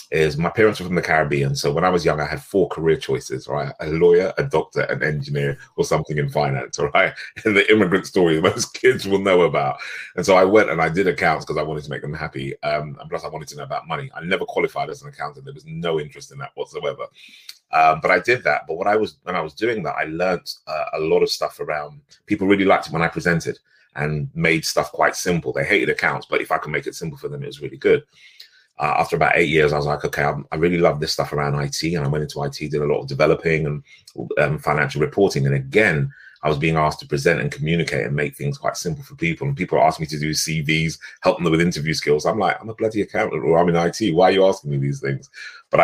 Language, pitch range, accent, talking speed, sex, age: English, 75-95 Hz, British, 260 wpm, male, 30-49